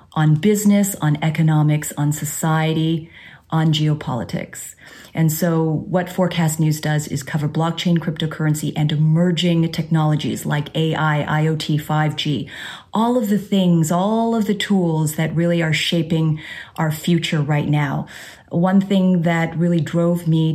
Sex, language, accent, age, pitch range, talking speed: female, English, American, 30-49, 155-175 Hz, 135 wpm